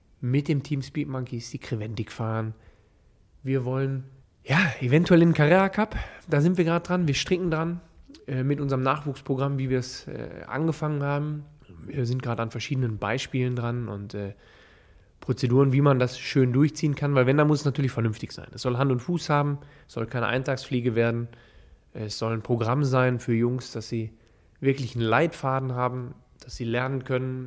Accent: German